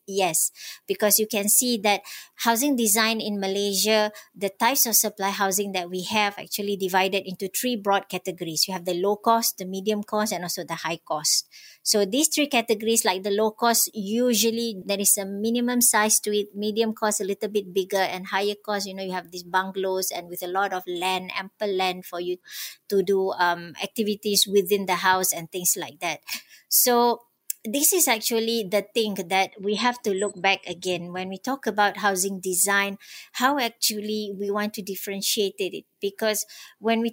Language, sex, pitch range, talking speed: English, male, 195-225 Hz, 190 wpm